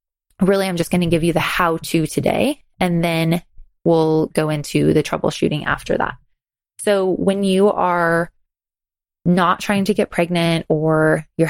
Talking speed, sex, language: 155 wpm, female, English